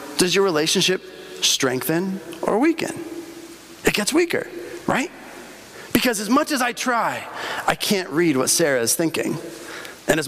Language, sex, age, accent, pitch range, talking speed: English, male, 30-49, American, 180-250 Hz, 145 wpm